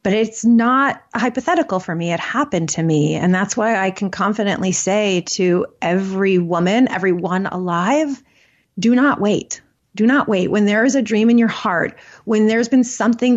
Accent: American